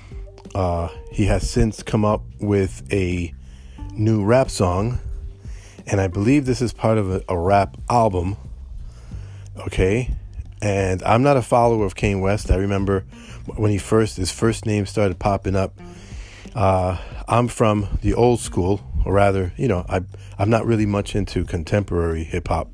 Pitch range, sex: 95-110 Hz, male